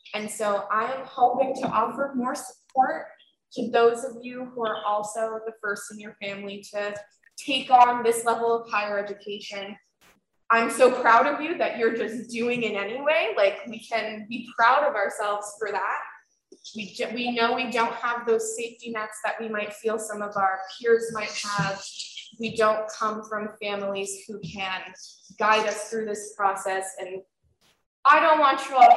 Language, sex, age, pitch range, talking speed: English, female, 20-39, 210-255 Hz, 180 wpm